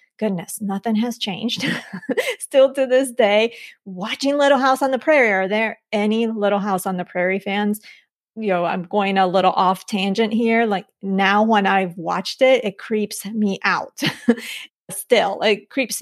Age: 30-49